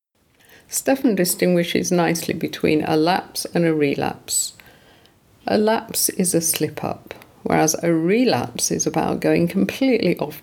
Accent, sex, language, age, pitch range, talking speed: British, female, English, 50-69, 155-200 Hz, 125 wpm